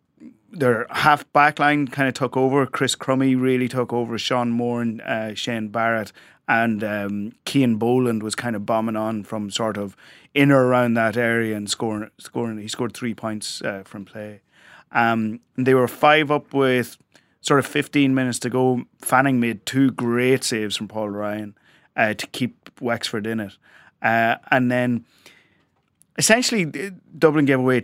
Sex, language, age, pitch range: male, English, 30-49, 115-140 Hz